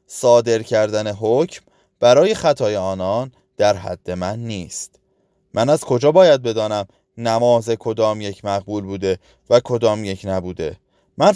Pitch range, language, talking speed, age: 90-125 Hz, Persian, 130 wpm, 20-39